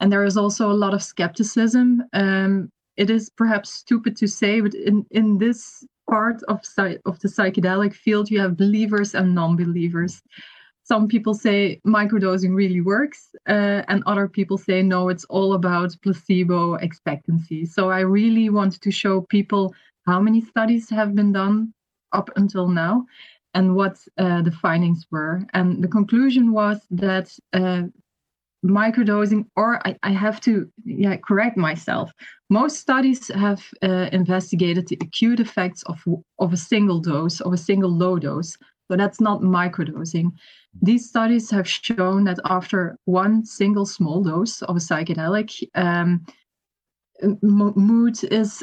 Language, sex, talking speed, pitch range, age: Danish, female, 150 wpm, 180-215 Hz, 20-39